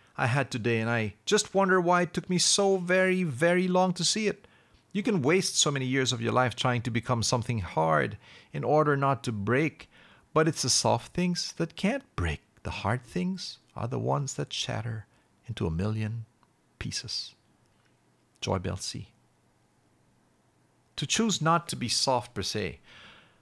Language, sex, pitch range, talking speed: English, male, 95-140 Hz, 175 wpm